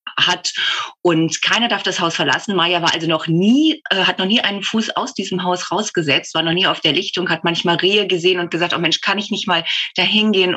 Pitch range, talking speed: 165-200 Hz, 240 wpm